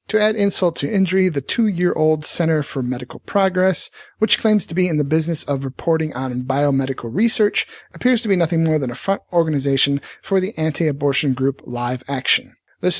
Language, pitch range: English, 140-185 Hz